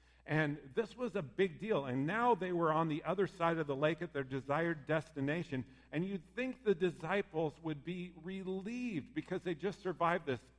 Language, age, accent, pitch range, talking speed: English, 50-69, American, 135-185 Hz, 195 wpm